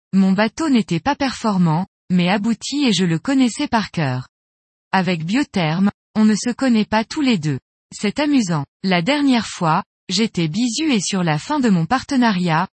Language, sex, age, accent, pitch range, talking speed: French, female, 20-39, French, 180-245 Hz, 175 wpm